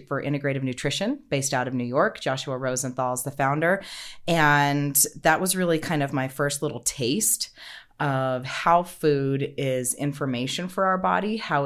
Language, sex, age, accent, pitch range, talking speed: English, female, 30-49, American, 125-160 Hz, 165 wpm